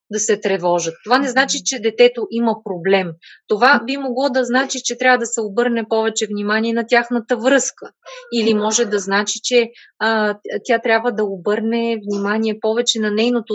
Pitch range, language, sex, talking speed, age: 215-265 Hz, Bulgarian, female, 175 wpm, 20-39